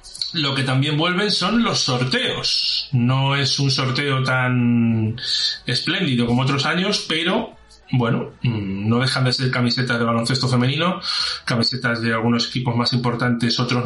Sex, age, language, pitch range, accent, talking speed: male, 30-49, Spanish, 120-145 Hz, Spanish, 145 wpm